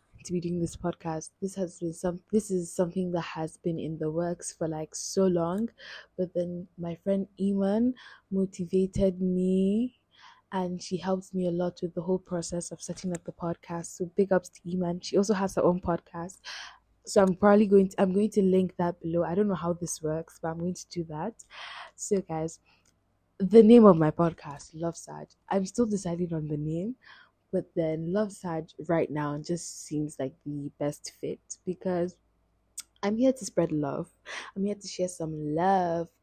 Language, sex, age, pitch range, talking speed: English, female, 20-39, 165-195 Hz, 195 wpm